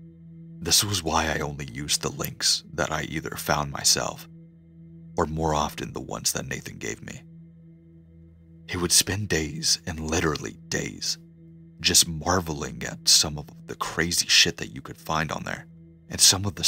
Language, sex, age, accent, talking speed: English, male, 30-49, American, 170 wpm